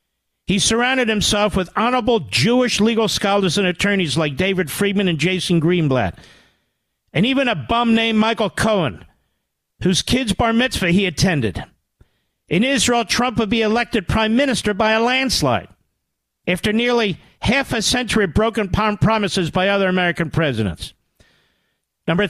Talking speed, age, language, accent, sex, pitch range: 145 wpm, 50-69, English, American, male, 170-225 Hz